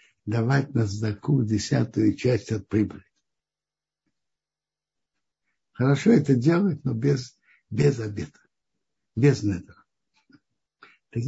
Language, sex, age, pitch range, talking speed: Russian, male, 60-79, 115-155 Hz, 90 wpm